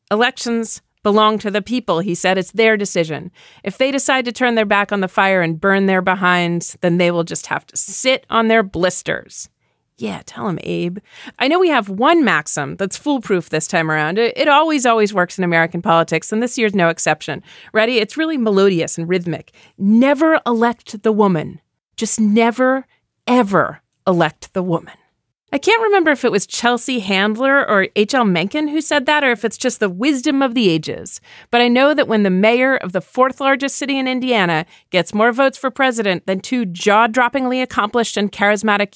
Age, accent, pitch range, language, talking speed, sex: 40-59, American, 185-255 Hz, English, 195 wpm, female